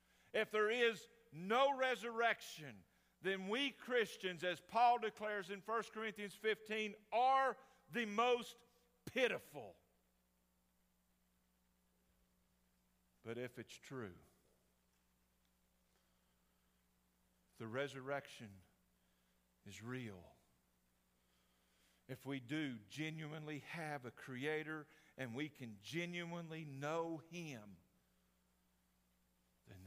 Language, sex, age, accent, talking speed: English, male, 50-69, American, 80 wpm